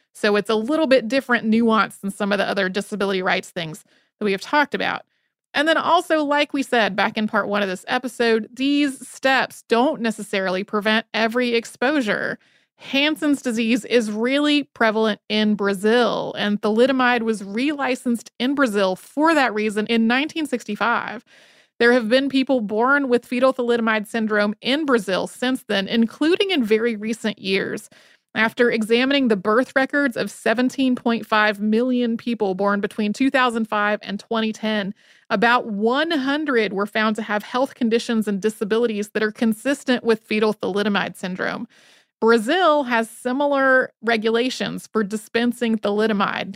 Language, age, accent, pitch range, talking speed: English, 30-49, American, 215-260 Hz, 145 wpm